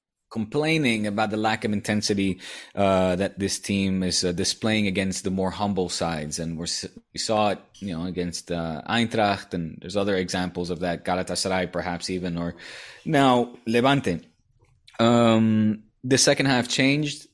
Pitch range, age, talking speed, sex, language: 95-110 Hz, 20-39, 155 wpm, male, English